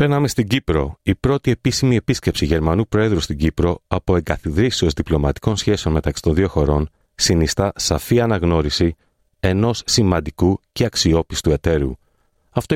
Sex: male